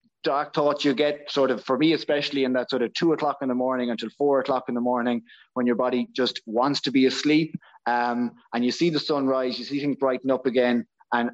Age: 20-39